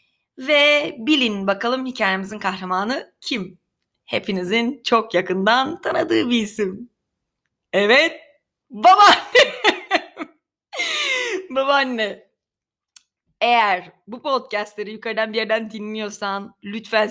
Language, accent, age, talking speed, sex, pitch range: Turkish, native, 30-49, 80 wpm, female, 215-300 Hz